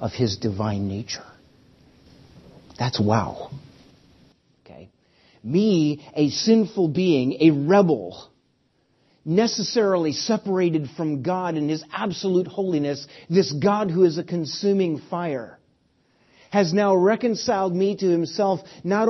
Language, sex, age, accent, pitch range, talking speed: English, male, 50-69, American, 130-190 Hz, 110 wpm